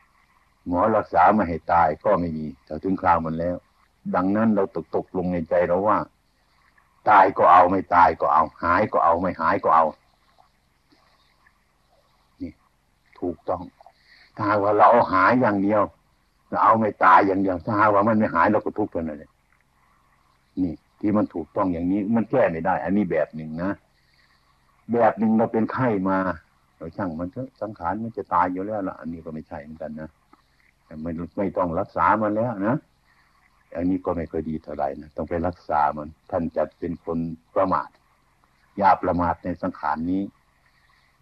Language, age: Thai, 60-79